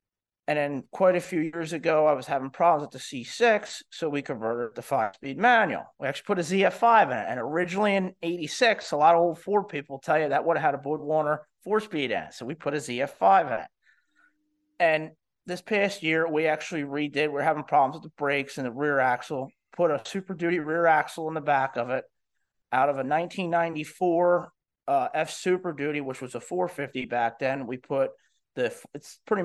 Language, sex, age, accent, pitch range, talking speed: English, male, 30-49, American, 145-180 Hz, 210 wpm